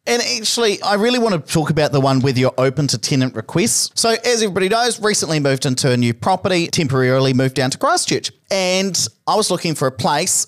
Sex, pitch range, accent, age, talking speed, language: male, 135-180 Hz, Australian, 40-59, 220 wpm, English